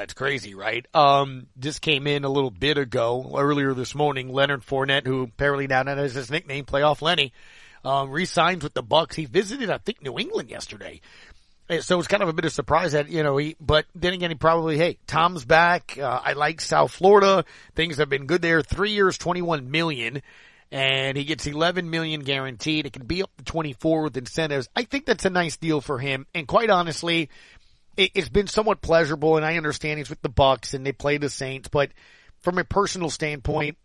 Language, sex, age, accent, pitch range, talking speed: English, male, 40-59, American, 140-170 Hz, 210 wpm